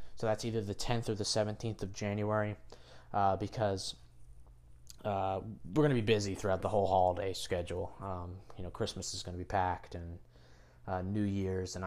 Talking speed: 185 wpm